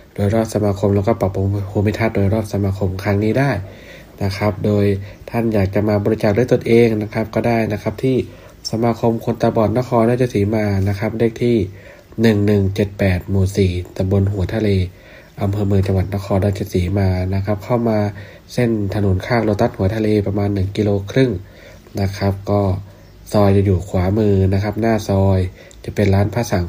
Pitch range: 95-110 Hz